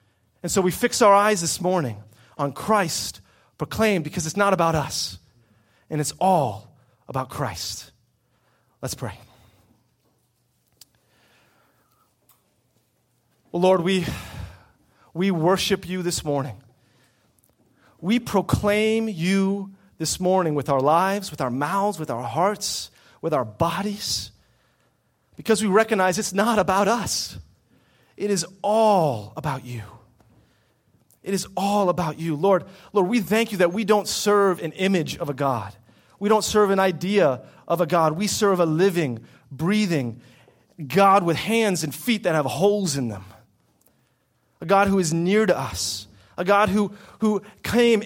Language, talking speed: English, 140 wpm